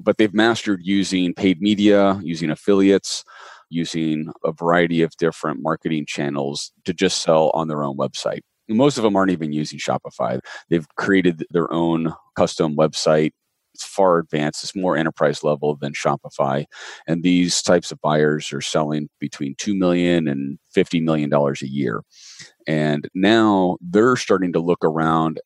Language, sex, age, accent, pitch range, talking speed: English, male, 30-49, American, 75-90 Hz, 155 wpm